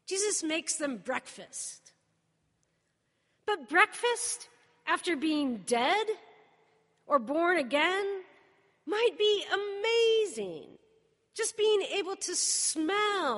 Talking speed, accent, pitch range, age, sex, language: 90 wpm, American, 260-360 Hz, 40-59, female, English